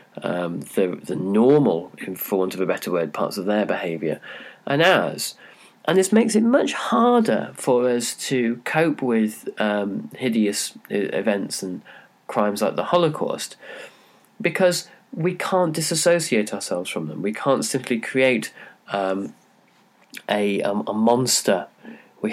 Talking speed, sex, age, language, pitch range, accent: 140 wpm, male, 30-49, English, 105-170 Hz, British